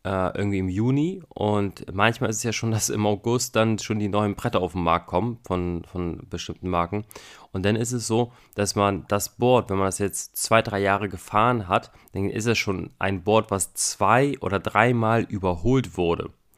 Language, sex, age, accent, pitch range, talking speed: German, male, 20-39, German, 95-115 Hz, 200 wpm